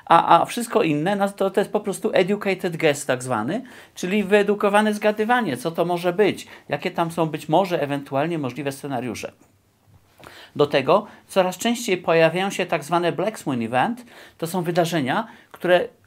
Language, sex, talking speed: Polish, male, 160 wpm